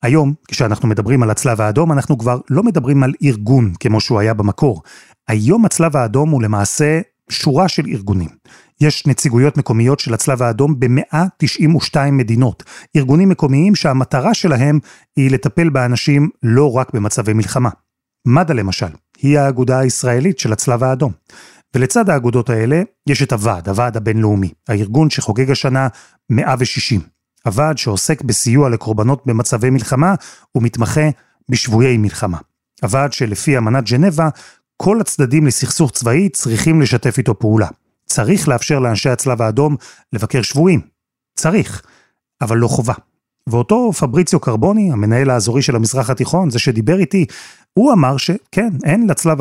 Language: Hebrew